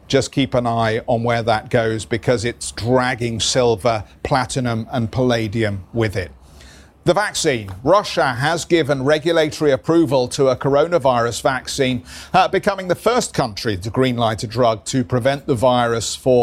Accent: British